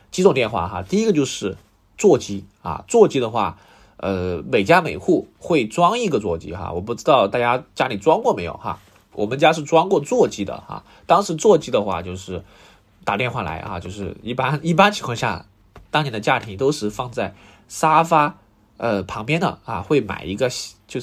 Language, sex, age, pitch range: Chinese, male, 20-39, 100-150 Hz